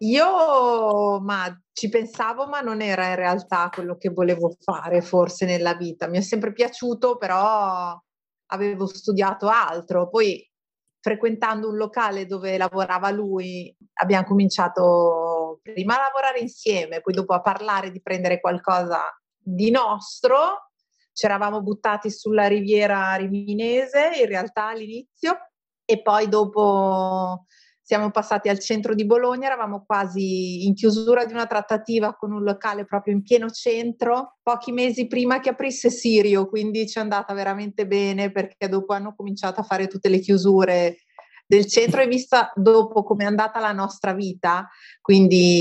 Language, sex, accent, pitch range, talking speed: Italian, female, native, 190-235 Hz, 145 wpm